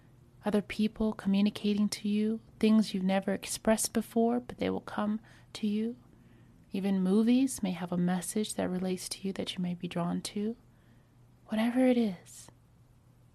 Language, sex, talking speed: English, female, 155 wpm